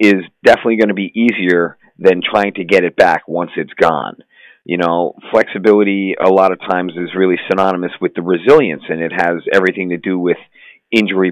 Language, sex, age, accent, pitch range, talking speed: English, male, 40-59, American, 85-95 Hz, 190 wpm